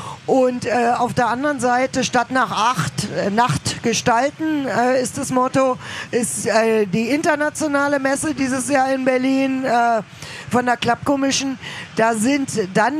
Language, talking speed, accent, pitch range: German, 150 wpm, German, 230-265 Hz